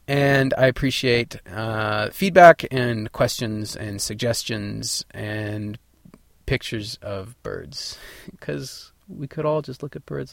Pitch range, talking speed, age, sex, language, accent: 110-145 Hz, 120 wpm, 20-39, male, English, American